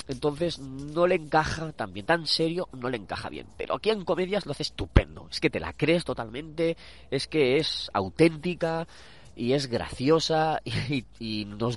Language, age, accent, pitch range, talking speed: Spanish, 30-49, Spanish, 105-155 Hz, 185 wpm